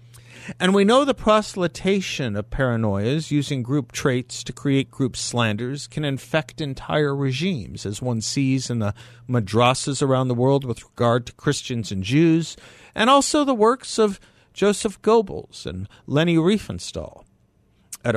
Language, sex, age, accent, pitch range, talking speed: English, male, 50-69, American, 120-165 Hz, 145 wpm